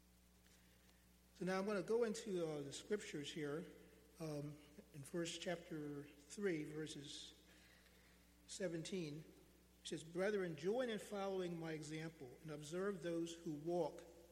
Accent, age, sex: American, 50-69, male